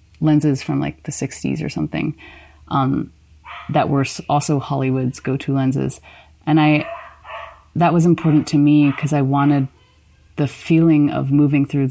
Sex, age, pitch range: female, 30-49, 125-150 Hz